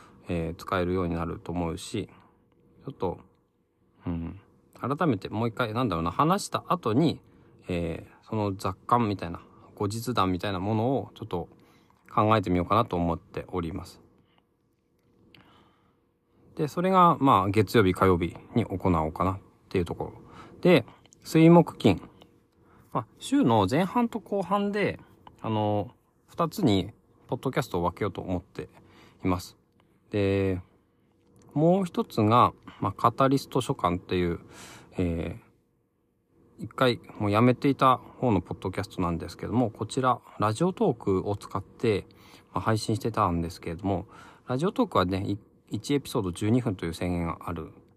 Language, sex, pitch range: Japanese, male, 90-125 Hz